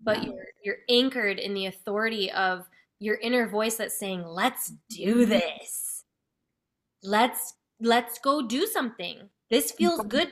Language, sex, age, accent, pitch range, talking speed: English, female, 10-29, American, 190-230 Hz, 140 wpm